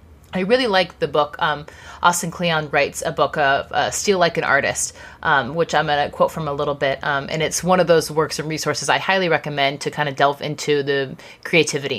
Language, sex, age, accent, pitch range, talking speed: English, female, 30-49, American, 150-185 Hz, 230 wpm